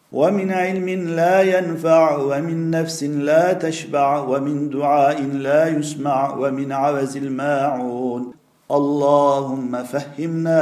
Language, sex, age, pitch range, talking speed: Turkish, male, 50-69, 140-165 Hz, 95 wpm